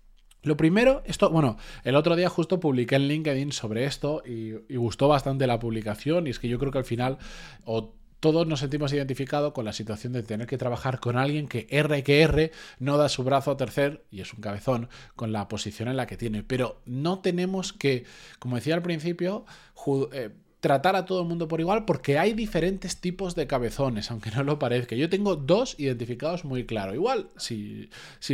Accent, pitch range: Spanish, 125-180 Hz